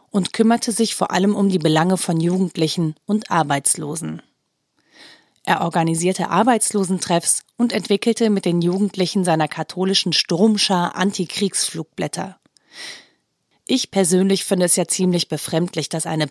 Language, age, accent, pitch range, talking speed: German, 30-49, German, 170-210 Hz, 120 wpm